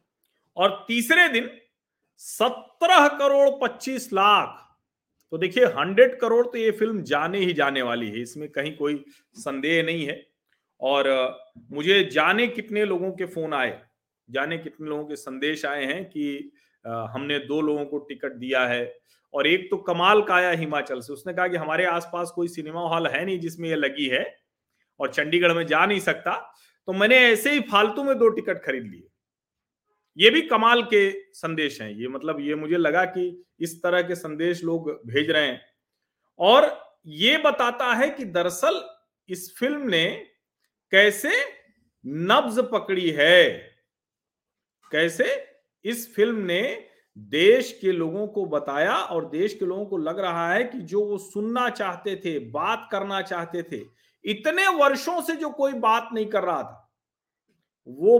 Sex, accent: male, native